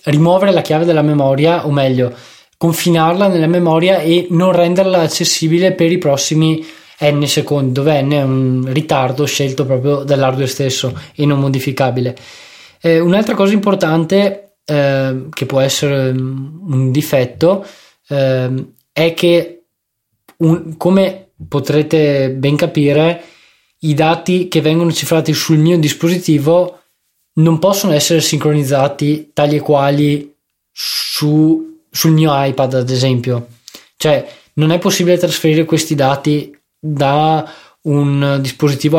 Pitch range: 140-165 Hz